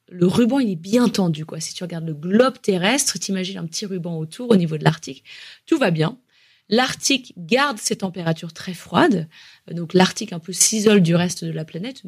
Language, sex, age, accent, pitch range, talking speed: French, female, 20-39, French, 175-240 Hz, 205 wpm